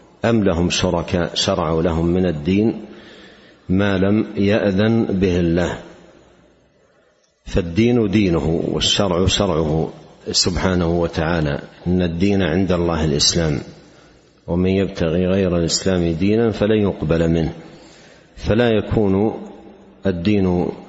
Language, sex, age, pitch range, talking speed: Arabic, male, 50-69, 85-105 Hz, 100 wpm